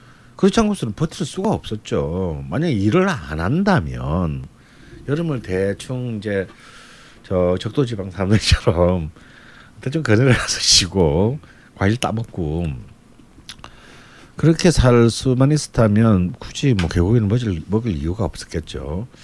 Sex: male